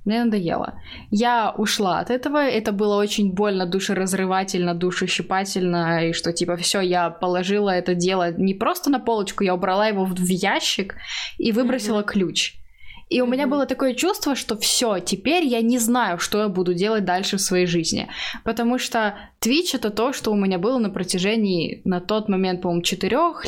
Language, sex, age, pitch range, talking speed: Russian, female, 10-29, 185-235 Hz, 175 wpm